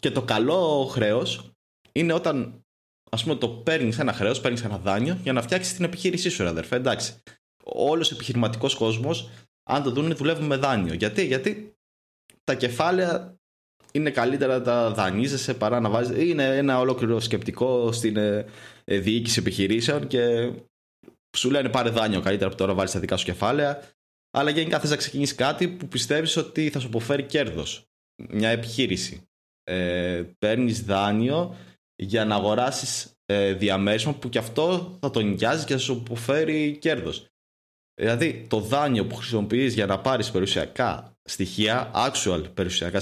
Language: Greek